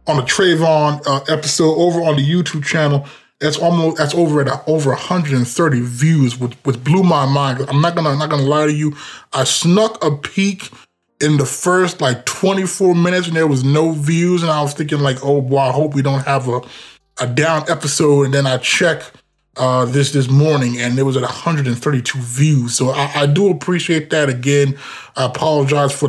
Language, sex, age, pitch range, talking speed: English, male, 20-39, 130-165 Hz, 200 wpm